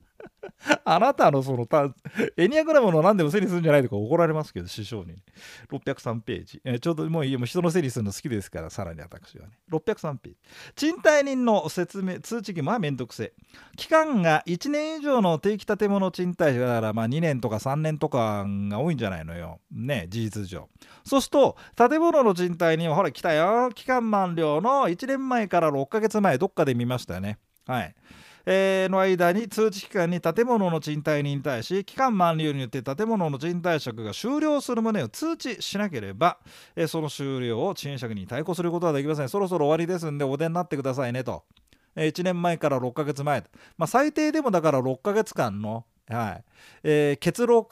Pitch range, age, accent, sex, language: 125-200 Hz, 40-59, native, male, Japanese